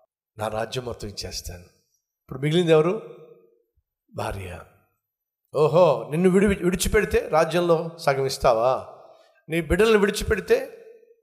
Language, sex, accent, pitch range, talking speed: Telugu, male, native, 135-195 Hz, 95 wpm